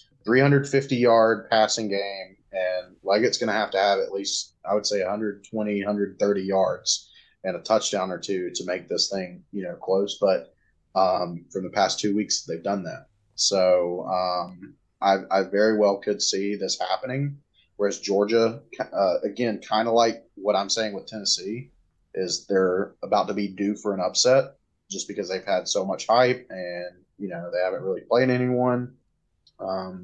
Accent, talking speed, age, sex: American, 175 wpm, 30-49, male